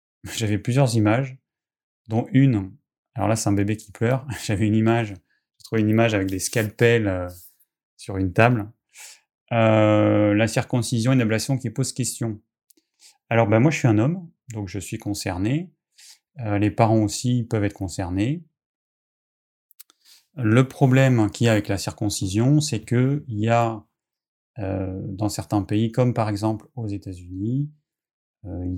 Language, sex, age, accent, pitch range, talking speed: French, male, 30-49, French, 100-125 Hz, 155 wpm